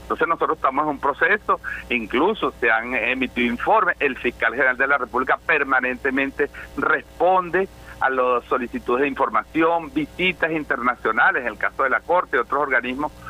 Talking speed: 160 wpm